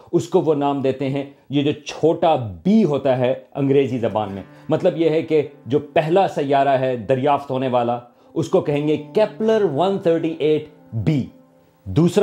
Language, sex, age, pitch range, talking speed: Urdu, male, 40-59, 135-180 Hz, 160 wpm